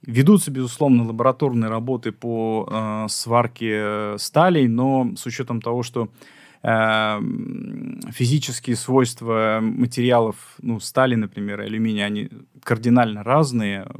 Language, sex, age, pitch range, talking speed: Russian, male, 20-39, 115-135 Hz, 105 wpm